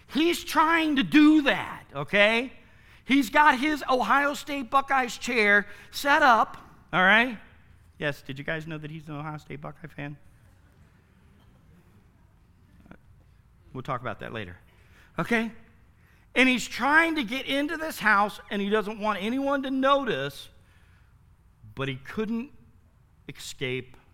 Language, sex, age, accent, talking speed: English, male, 50-69, American, 135 wpm